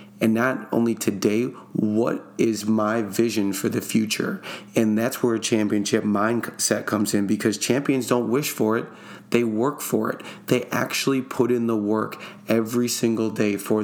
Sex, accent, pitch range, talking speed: male, American, 110-125 Hz, 170 wpm